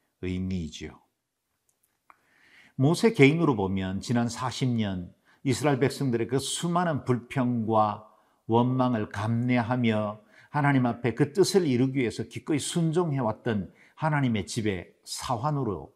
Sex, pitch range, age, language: male, 100-140 Hz, 50-69, Korean